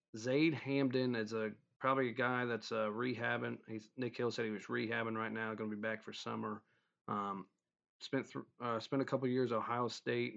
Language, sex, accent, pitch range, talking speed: English, male, American, 110-125 Hz, 210 wpm